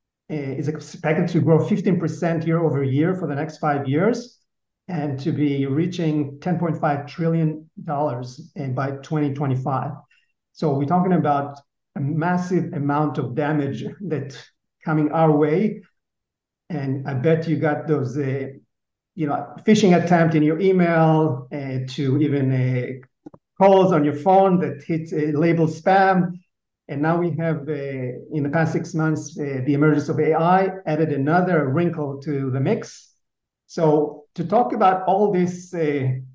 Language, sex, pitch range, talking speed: English, male, 145-170 Hz, 145 wpm